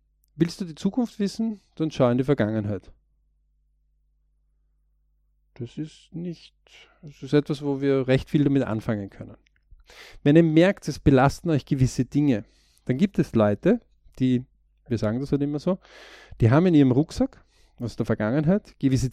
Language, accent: German, German